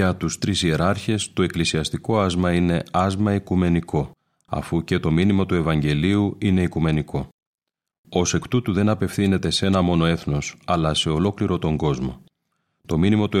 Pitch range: 80-100 Hz